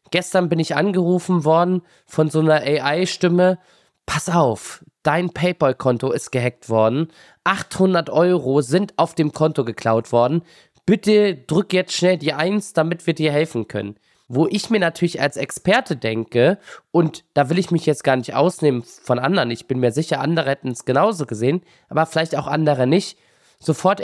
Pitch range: 140-175 Hz